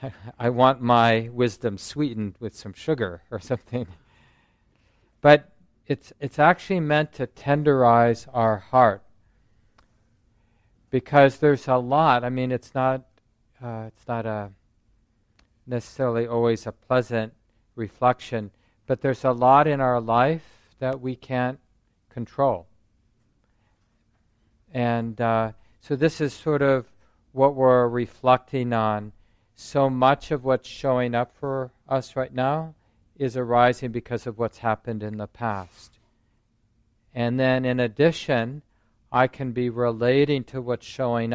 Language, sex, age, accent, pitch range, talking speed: English, male, 50-69, American, 110-130 Hz, 130 wpm